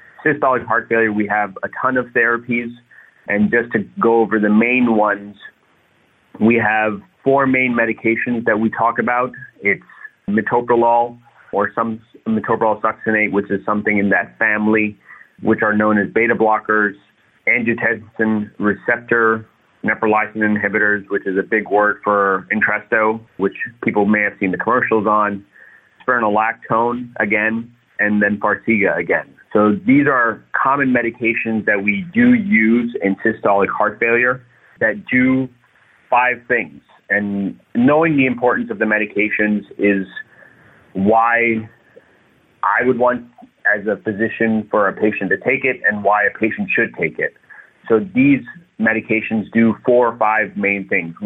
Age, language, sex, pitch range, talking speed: 30-49, English, male, 105-120 Hz, 145 wpm